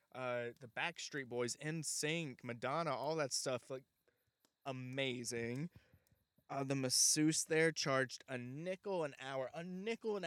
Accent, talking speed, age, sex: American, 135 wpm, 20-39, male